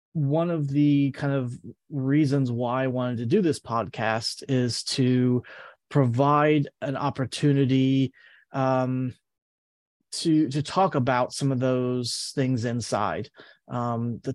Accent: American